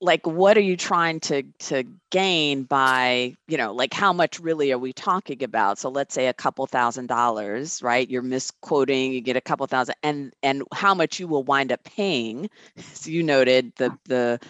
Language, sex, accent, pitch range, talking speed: English, female, American, 130-165 Hz, 200 wpm